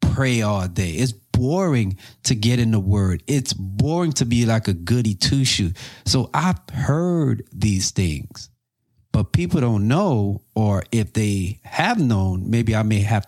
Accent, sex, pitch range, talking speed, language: American, male, 100-130 Hz, 165 wpm, English